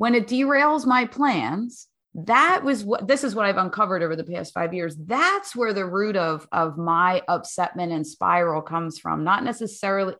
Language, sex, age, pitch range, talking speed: English, female, 30-49, 175-240 Hz, 190 wpm